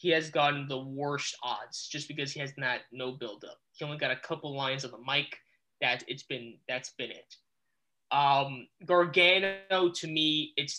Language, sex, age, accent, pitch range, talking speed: English, male, 20-39, American, 140-185 Hz, 185 wpm